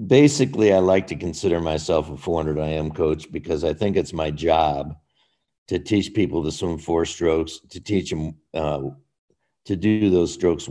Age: 60-79